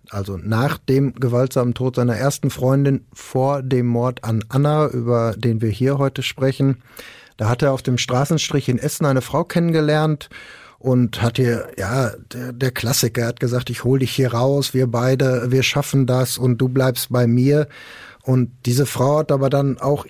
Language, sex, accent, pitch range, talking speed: German, male, German, 120-140 Hz, 180 wpm